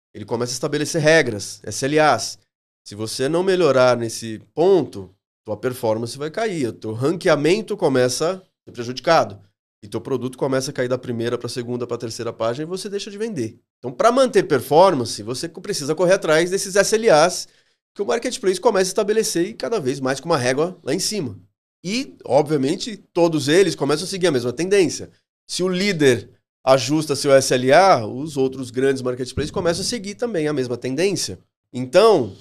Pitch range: 120-165 Hz